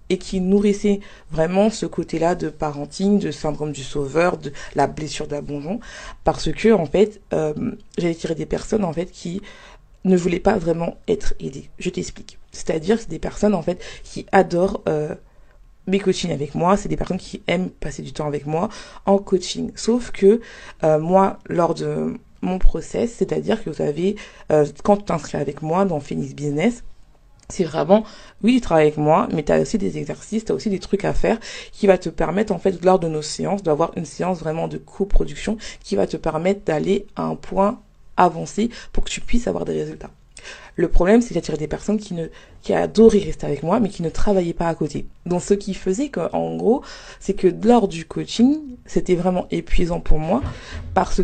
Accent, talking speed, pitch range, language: French, 200 wpm, 160-205 Hz, French